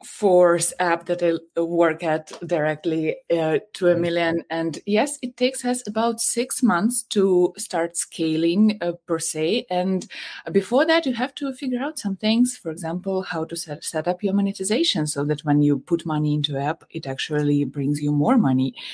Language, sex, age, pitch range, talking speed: English, female, 20-39, 145-190 Hz, 185 wpm